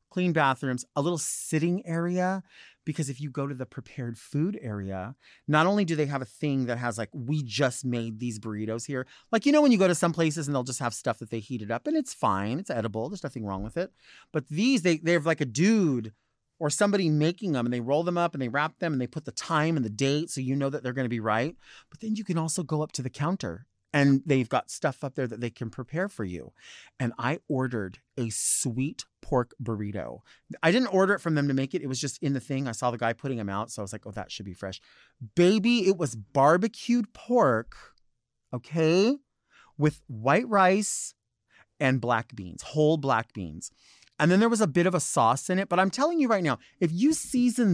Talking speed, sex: 240 wpm, male